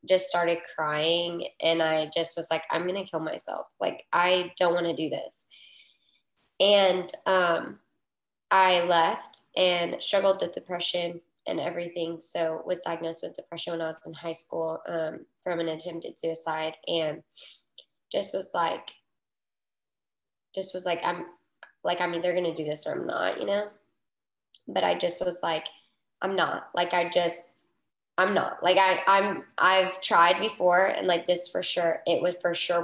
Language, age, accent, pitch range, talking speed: English, 10-29, American, 165-180 Hz, 170 wpm